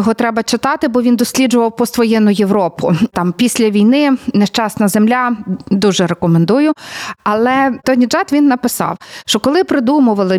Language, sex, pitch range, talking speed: Ukrainian, female, 220-275 Hz, 140 wpm